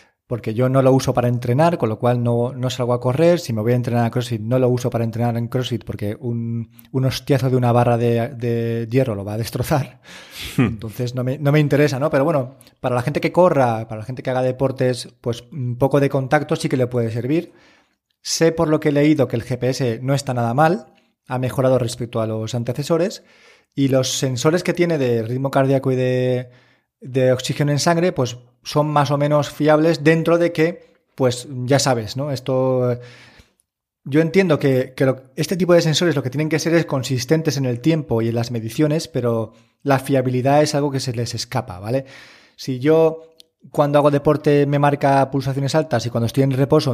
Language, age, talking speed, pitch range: Spanish, 20-39, 210 wpm, 120-150 Hz